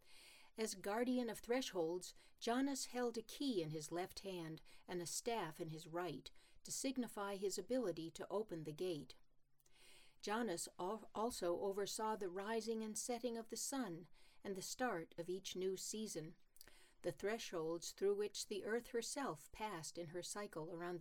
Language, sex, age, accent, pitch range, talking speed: English, female, 60-79, American, 175-230 Hz, 155 wpm